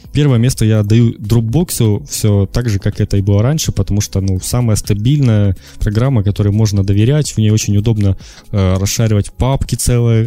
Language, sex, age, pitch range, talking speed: Russian, male, 20-39, 100-120 Hz, 175 wpm